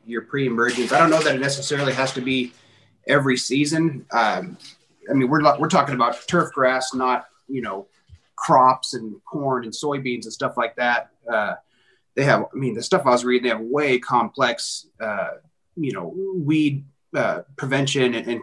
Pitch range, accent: 120-140 Hz, American